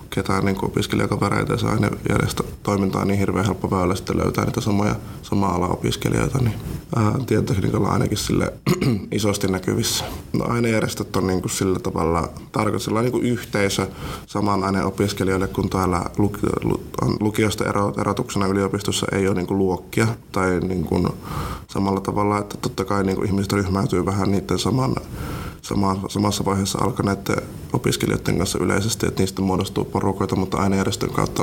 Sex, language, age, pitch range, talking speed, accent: male, Finnish, 20-39, 95-105 Hz, 150 wpm, native